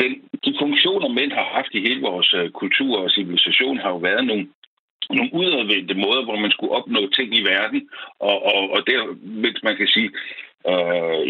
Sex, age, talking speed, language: male, 60-79, 190 wpm, Danish